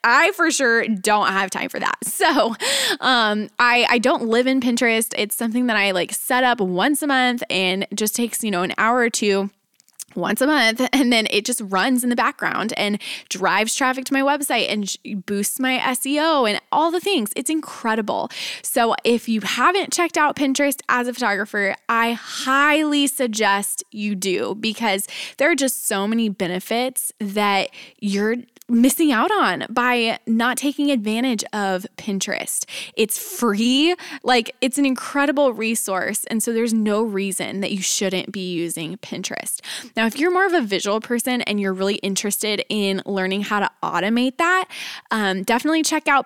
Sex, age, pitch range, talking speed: female, 20-39, 205-260 Hz, 175 wpm